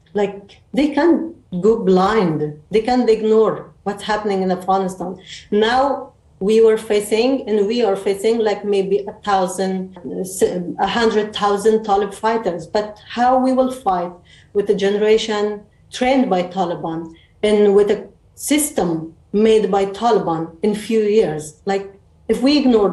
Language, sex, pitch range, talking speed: English, female, 185-220 Hz, 145 wpm